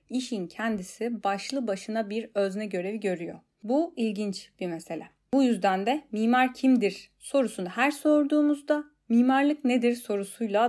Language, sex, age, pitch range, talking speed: Turkish, female, 30-49, 190-245 Hz, 130 wpm